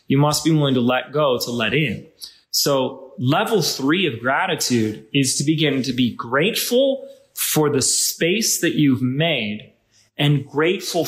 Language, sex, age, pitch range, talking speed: English, male, 20-39, 120-155 Hz, 155 wpm